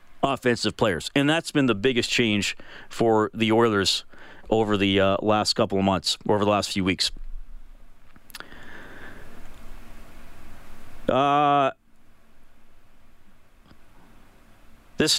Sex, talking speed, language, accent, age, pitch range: male, 105 wpm, English, American, 40-59, 110-145 Hz